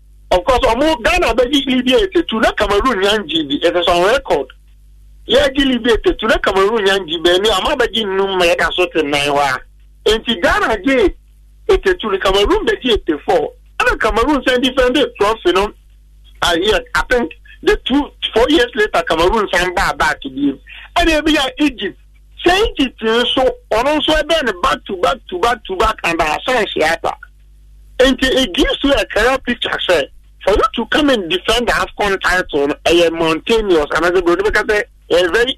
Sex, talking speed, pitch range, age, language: male, 120 wpm, 195-320 Hz, 50-69, English